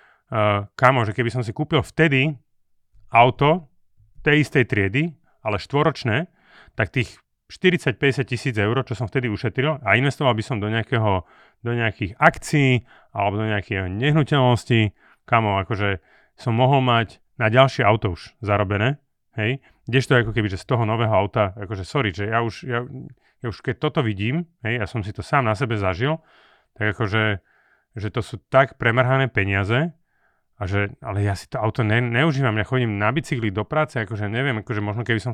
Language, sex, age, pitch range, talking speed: Slovak, male, 30-49, 105-130 Hz, 180 wpm